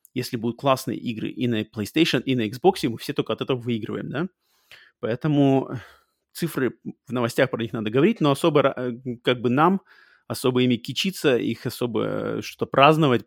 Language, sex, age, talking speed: Russian, male, 20-39, 165 wpm